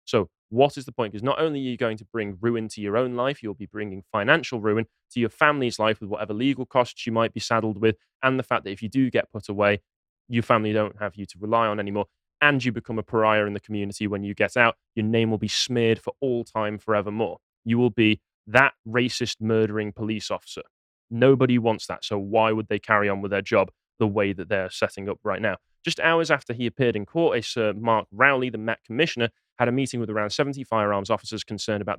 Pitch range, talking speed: 105-135 Hz, 240 wpm